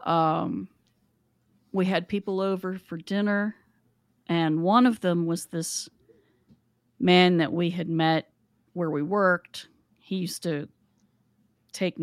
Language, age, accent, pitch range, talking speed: English, 40-59, American, 150-175 Hz, 125 wpm